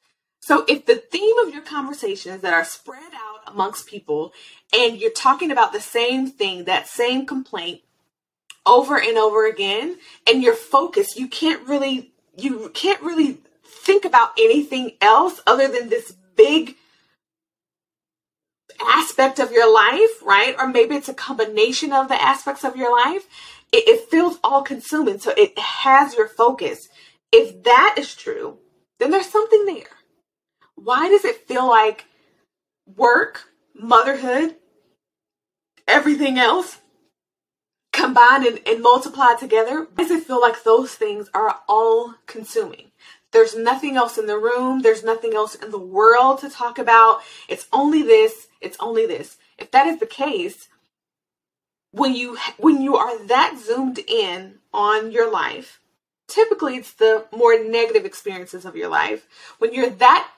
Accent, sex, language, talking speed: American, female, English, 150 wpm